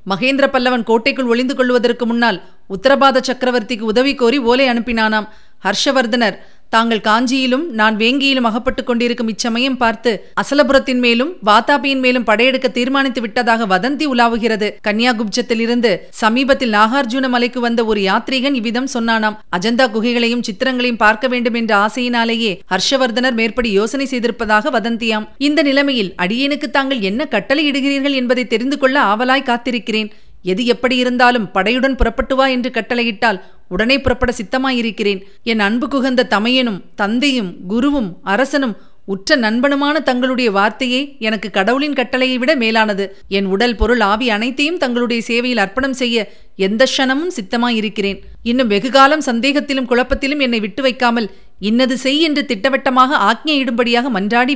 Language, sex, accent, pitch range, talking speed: Tamil, female, native, 220-265 Hz, 125 wpm